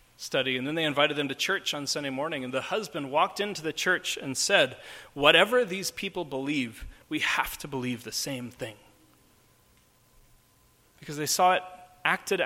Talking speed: 175 wpm